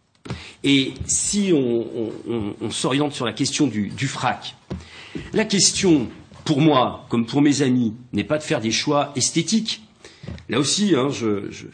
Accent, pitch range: French, 130-180 Hz